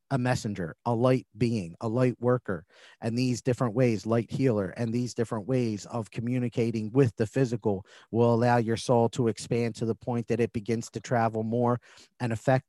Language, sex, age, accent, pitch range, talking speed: English, male, 40-59, American, 110-125 Hz, 190 wpm